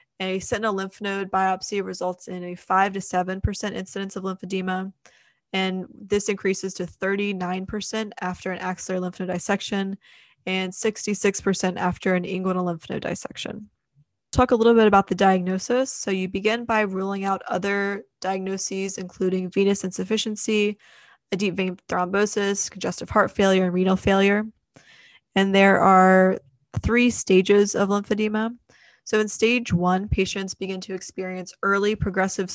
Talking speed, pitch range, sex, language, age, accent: 145 wpm, 185-205 Hz, female, English, 20-39, American